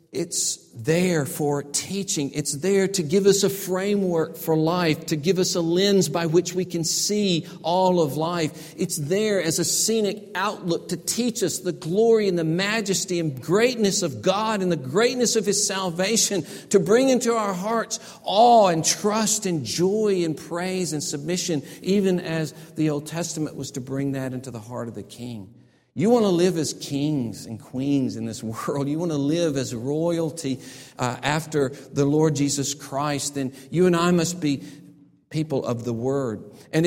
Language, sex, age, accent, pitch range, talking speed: English, male, 50-69, American, 155-195 Hz, 185 wpm